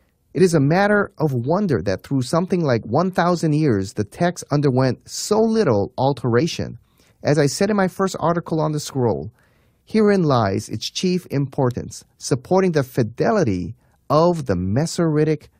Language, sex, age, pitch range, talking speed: English, male, 30-49, 115-160 Hz, 150 wpm